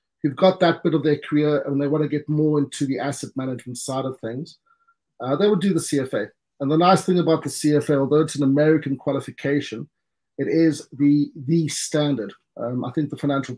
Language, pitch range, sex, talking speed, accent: English, 130-150 Hz, male, 210 wpm, South African